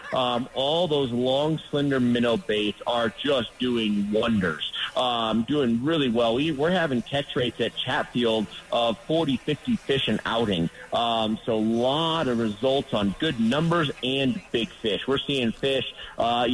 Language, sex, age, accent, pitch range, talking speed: English, male, 40-59, American, 115-145 Hz, 160 wpm